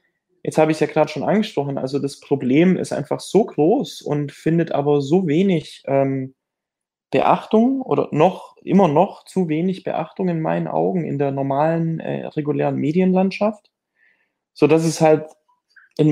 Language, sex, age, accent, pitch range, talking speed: German, male, 20-39, German, 140-170 Hz, 160 wpm